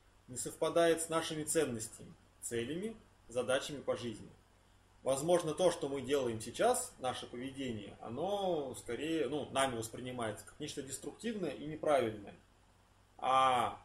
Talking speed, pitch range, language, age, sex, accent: 120 wpm, 95-140 Hz, Russian, 20-39, male, native